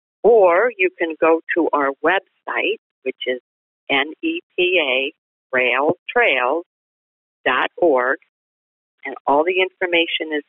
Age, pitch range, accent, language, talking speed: 50-69, 135-200 Hz, American, English, 85 wpm